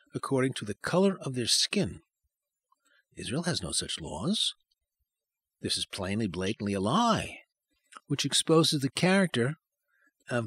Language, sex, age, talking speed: English, male, 60-79, 130 wpm